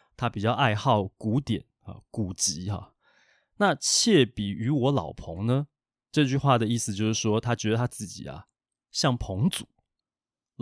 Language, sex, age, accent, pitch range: Chinese, male, 20-39, native, 105-140 Hz